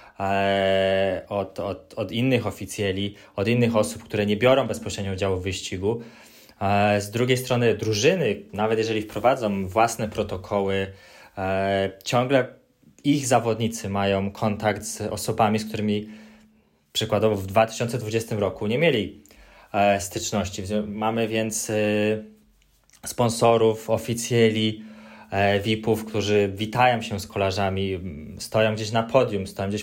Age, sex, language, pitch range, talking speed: 20-39, male, Polish, 100-115 Hz, 110 wpm